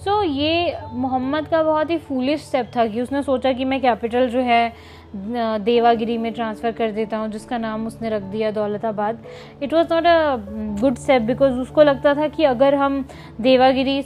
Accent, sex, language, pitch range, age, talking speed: native, female, Hindi, 230-285 Hz, 20-39, 190 wpm